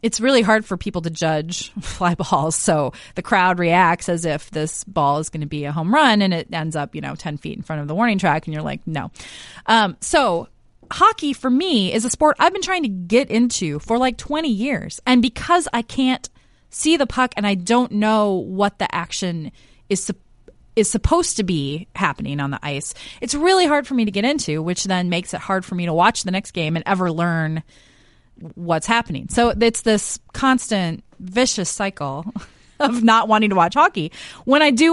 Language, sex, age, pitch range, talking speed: English, female, 30-49, 170-245 Hz, 215 wpm